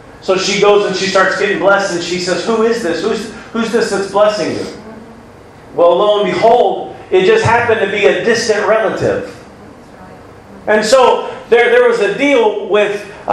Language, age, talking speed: English, 40-59, 180 wpm